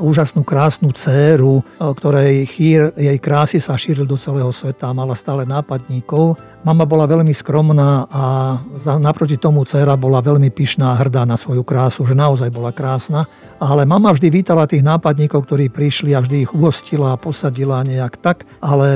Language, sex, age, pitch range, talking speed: Slovak, male, 50-69, 130-155 Hz, 165 wpm